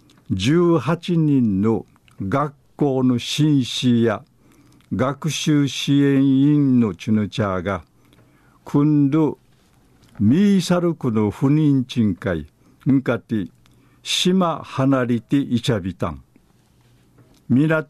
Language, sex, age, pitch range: Japanese, male, 50-69, 115-145 Hz